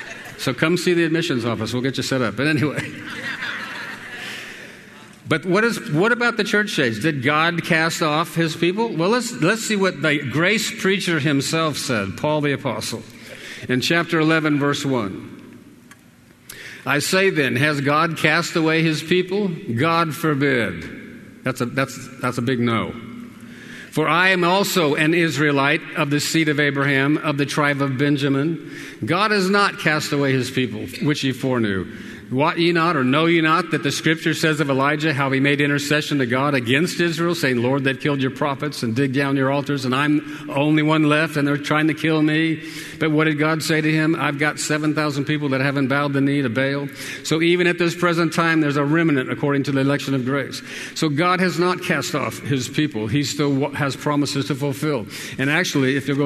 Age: 50-69